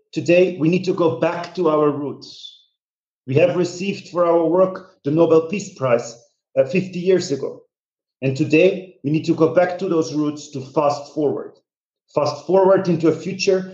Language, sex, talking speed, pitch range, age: English, male, 180 wpm, 145-180 Hz, 40-59